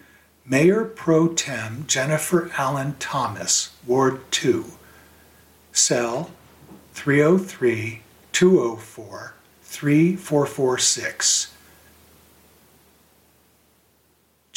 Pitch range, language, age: 105-150 Hz, English, 60-79